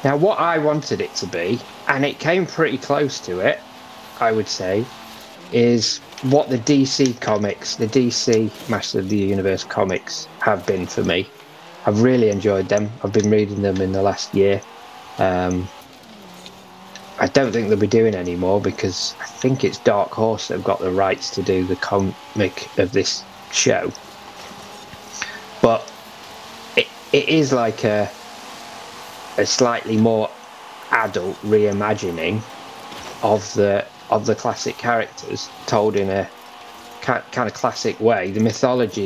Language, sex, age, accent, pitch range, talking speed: English, male, 20-39, British, 100-120 Hz, 150 wpm